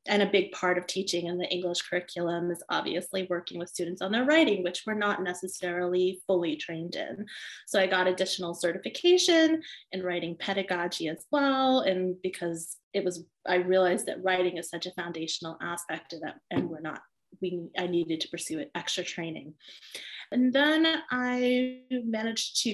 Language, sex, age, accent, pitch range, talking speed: English, female, 20-39, American, 175-215 Hz, 170 wpm